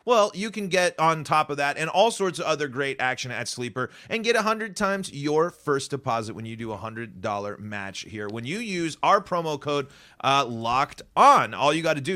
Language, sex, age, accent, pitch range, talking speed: English, male, 30-49, American, 115-165 Hz, 230 wpm